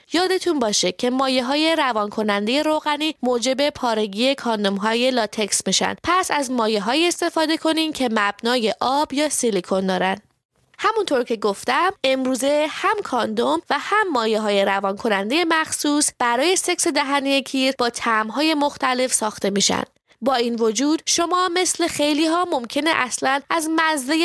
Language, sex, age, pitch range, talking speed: English, female, 20-39, 230-305 Hz, 150 wpm